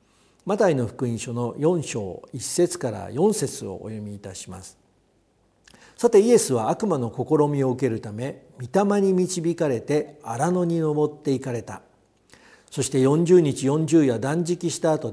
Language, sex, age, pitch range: Japanese, male, 50-69, 120-185 Hz